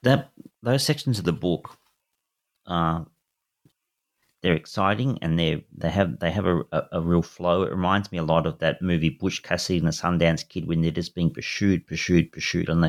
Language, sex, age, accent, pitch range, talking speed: English, male, 40-59, Australian, 85-110 Hz, 205 wpm